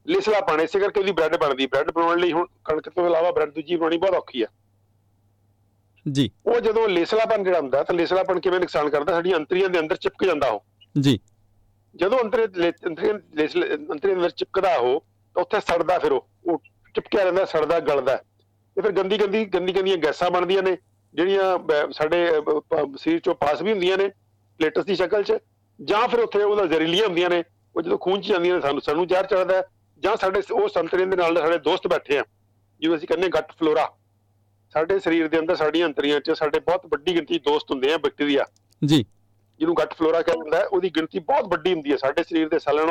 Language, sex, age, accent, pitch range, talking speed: English, male, 50-69, Indian, 140-195 Hz, 65 wpm